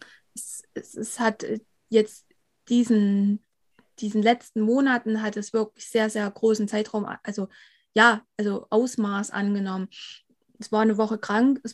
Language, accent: German, German